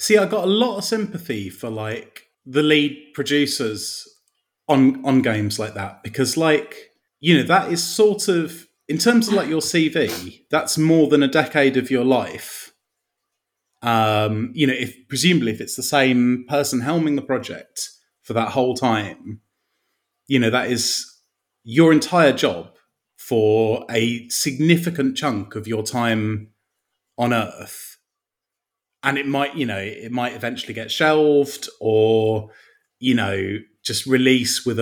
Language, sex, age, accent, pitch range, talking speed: English, male, 30-49, British, 110-150 Hz, 155 wpm